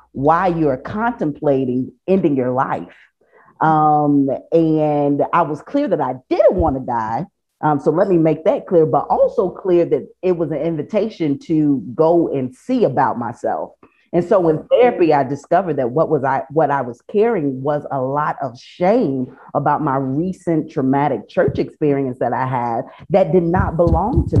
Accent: American